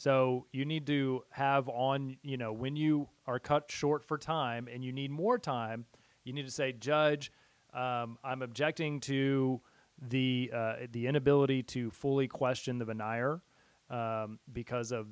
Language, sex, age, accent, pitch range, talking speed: English, male, 30-49, American, 120-140 Hz, 165 wpm